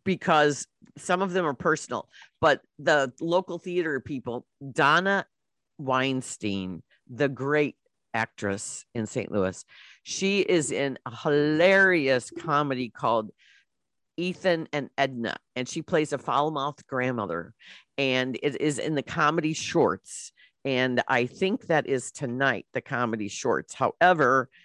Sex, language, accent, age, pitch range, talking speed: female, English, American, 50-69, 125-155 Hz, 125 wpm